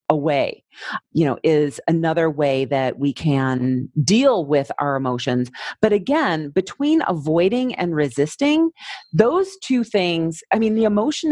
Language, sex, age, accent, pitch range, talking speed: English, female, 40-59, American, 145-210 Hz, 140 wpm